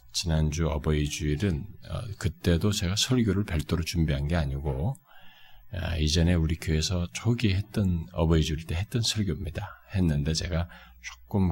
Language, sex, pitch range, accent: Korean, male, 75-100 Hz, native